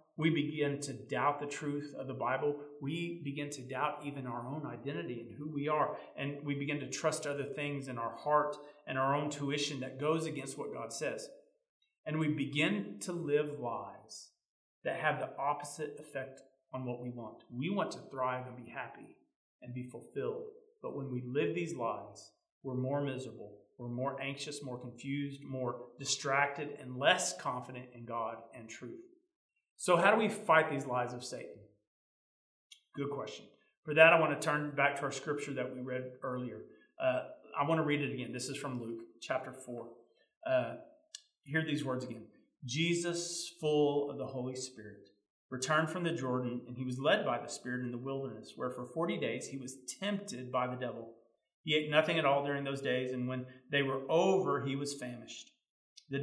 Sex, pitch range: male, 125-155 Hz